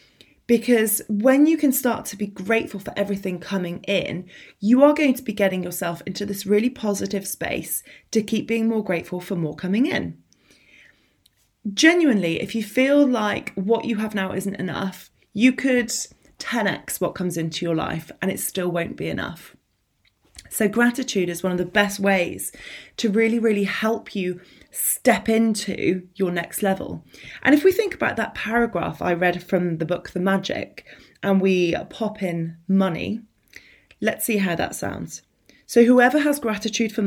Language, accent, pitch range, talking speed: English, British, 180-230 Hz, 170 wpm